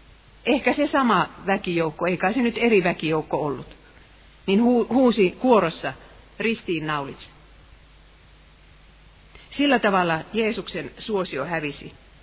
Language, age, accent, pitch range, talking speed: Finnish, 50-69, native, 155-225 Hz, 95 wpm